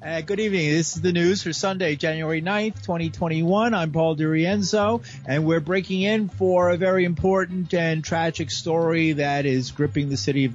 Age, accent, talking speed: 40-59, American, 180 wpm